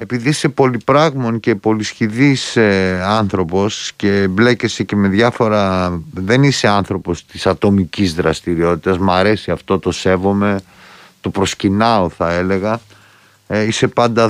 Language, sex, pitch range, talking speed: Greek, male, 95-115 Hz, 125 wpm